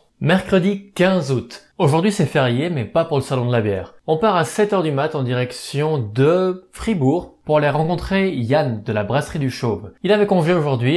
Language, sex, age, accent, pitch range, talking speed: French, male, 20-39, French, 120-170 Hz, 200 wpm